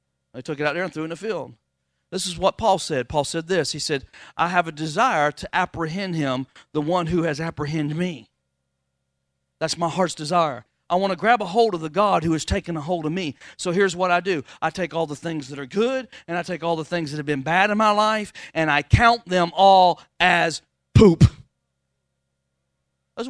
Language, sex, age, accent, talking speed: English, male, 40-59, American, 225 wpm